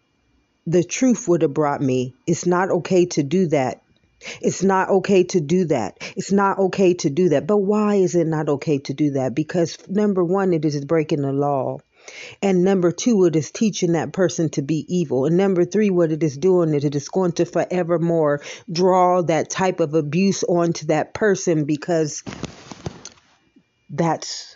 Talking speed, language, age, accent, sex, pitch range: 185 wpm, English, 40-59, American, female, 145-180 Hz